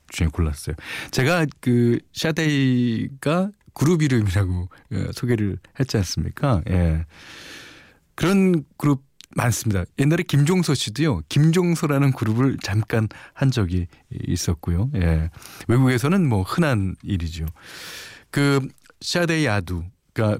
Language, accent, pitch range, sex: Korean, native, 95-140 Hz, male